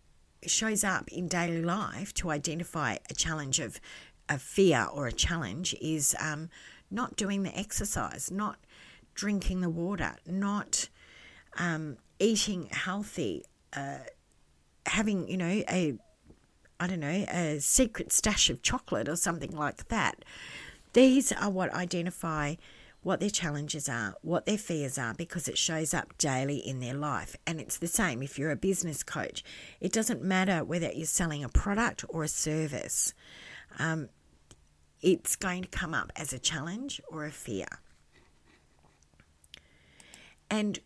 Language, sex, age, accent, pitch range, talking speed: English, female, 50-69, Australian, 140-195 Hz, 145 wpm